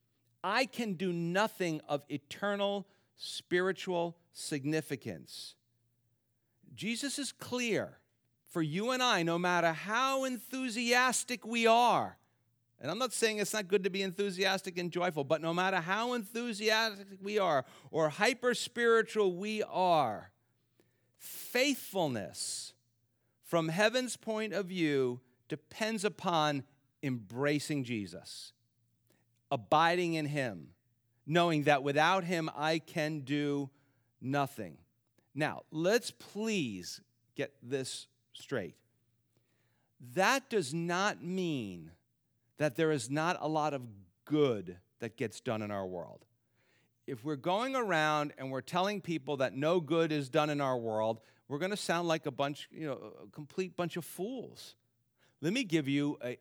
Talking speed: 130 wpm